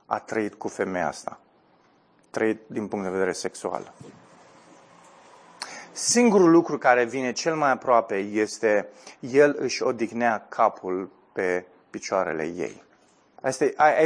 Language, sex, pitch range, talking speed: Romanian, male, 120-155 Hz, 115 wpm